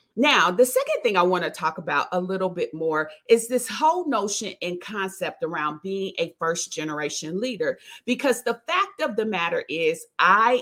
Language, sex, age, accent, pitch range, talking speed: English, female, 40-59, American, 180-255 Hz, 180 wpm